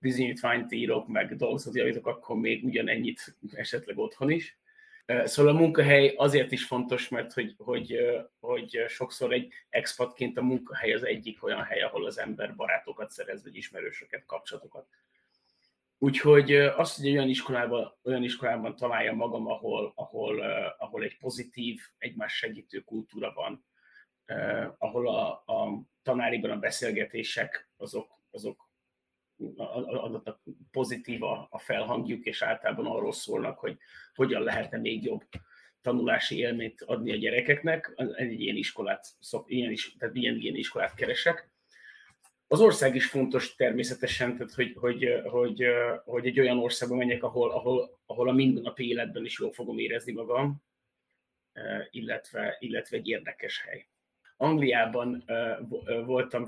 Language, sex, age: Hungarian, male, 30-49